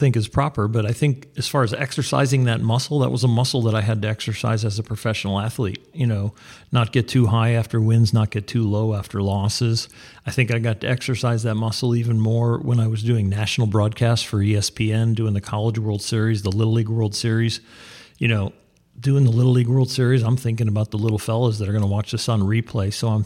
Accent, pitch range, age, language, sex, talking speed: American, 110-125 Hz, 40-59, English, male, 235 wpm